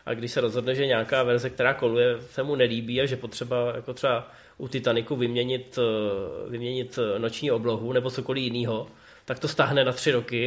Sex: male